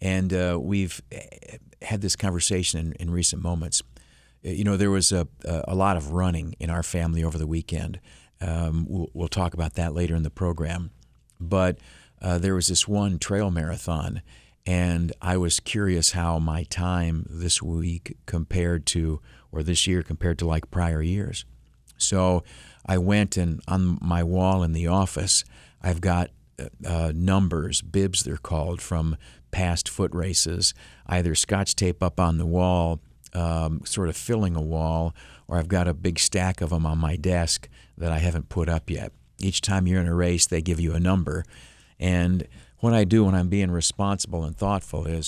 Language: English